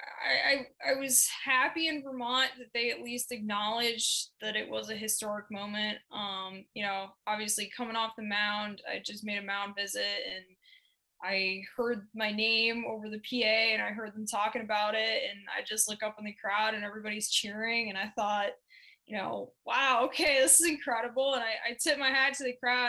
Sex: female